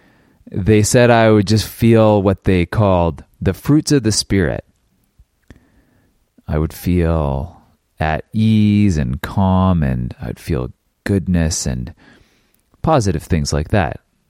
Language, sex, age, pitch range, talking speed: English, male, 30-49, 80-115 Hz, 125 wpm